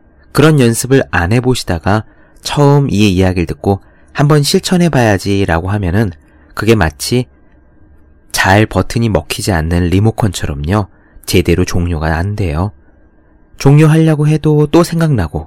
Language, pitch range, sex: Korean, 80-115 Hz, male